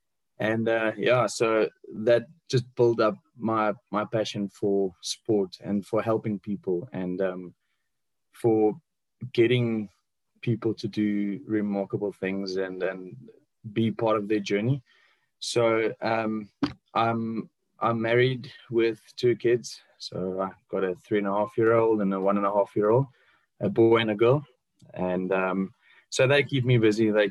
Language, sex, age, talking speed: English, male, 20-39, 160 wpm